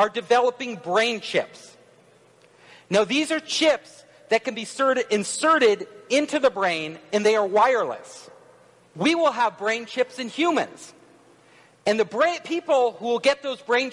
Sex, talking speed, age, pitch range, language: male, 145 wpm, 40-59, 225-290 Hz, English